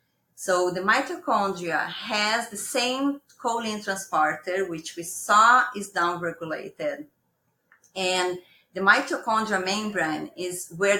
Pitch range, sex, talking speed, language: 175-225 Hz, female, 105 wpm, English